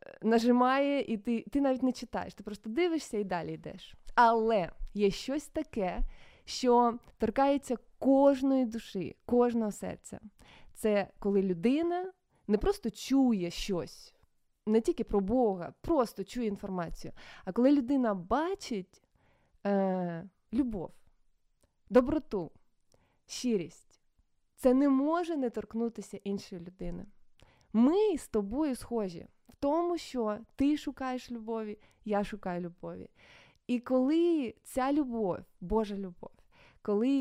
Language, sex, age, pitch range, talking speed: Ukrainian, female, 20-39, 200-265 Hz, 115 wpm